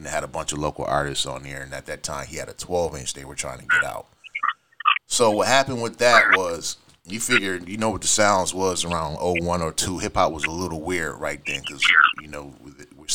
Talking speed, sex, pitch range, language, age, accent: 235 wpm, male, 80-100 Hz, English, 30-49, American